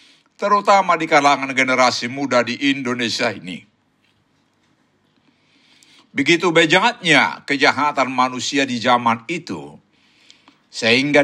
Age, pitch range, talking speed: 60-79, 130-165 Hz, 85 wpm